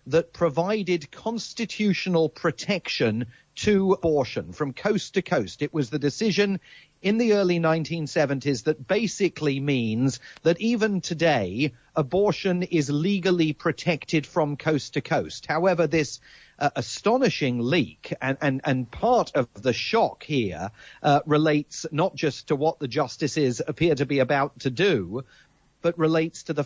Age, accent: 40-59, British